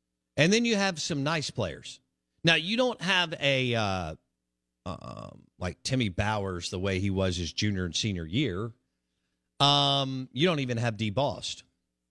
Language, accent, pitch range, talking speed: English, American, 95-135 Hz, 160 wpm